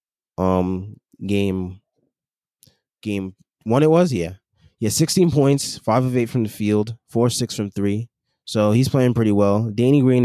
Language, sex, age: English, male, 20-39